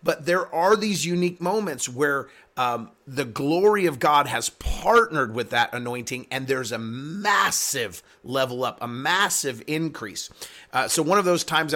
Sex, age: male, 30-49